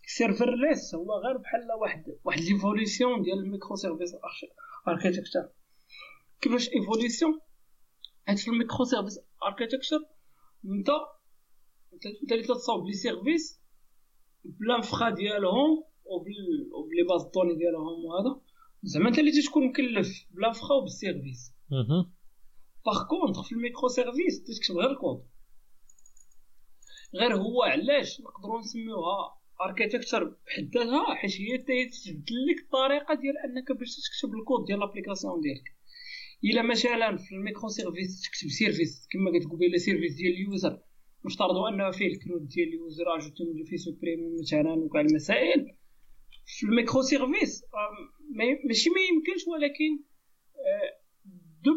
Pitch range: 190-275 Hz